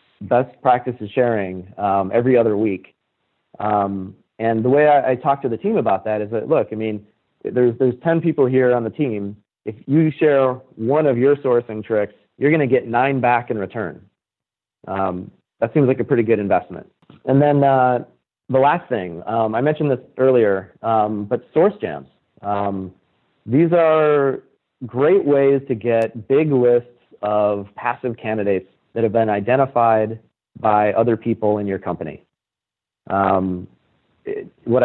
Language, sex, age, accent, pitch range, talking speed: English, male, 40-59, American, 110-130 Hz, 165 wpm